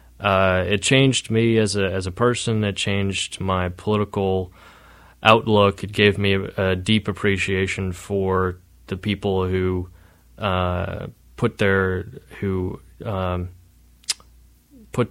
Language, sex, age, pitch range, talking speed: English, male, 20-39, 90-100 Hz, 125 wpm